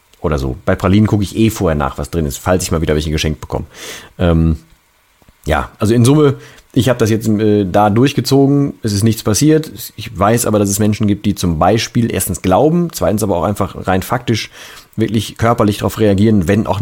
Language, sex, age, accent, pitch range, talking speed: German, male, 40-59, German, 95-115 Hz, 210 wpm